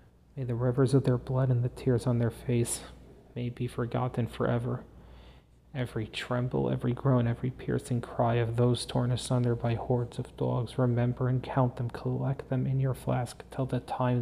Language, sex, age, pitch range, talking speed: English, male, 30-49, 80-125 Hz, 180 wpm